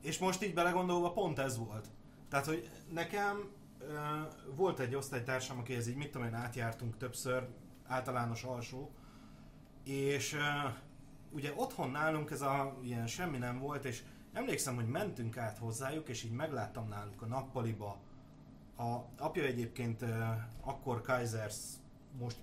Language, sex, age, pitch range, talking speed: Hungarian, male, 30-49, 120-145 Hz, 145 wpm